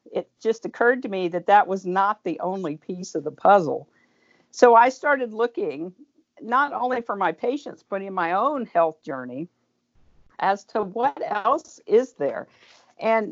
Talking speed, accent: 165 wpm, American